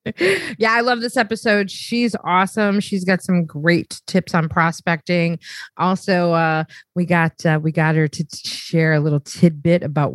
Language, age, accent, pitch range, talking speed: English, 30-49, American, 165-200 Hz, 160 wpm